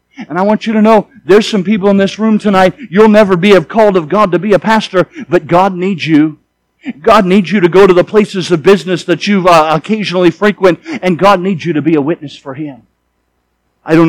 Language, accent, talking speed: English, American, 225 wpm